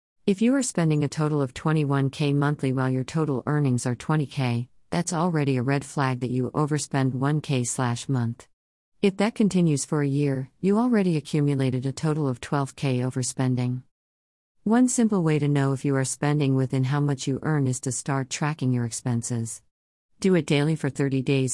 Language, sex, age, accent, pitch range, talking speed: English, female, 50-69, American, 130-160 Hz, 185 wpm